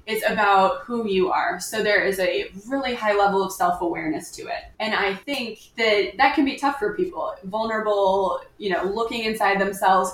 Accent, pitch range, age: American, 190-230 Hz, 20-39